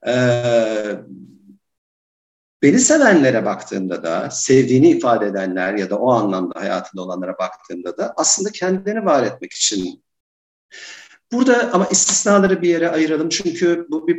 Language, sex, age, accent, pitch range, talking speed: Turkish, male, 50-69, native, 125-200 Hz, 125 wpm